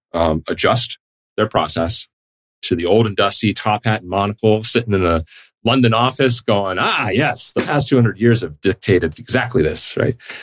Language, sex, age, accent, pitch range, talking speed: English, male, 30-49, American, 80-110 Hz, 180 wpm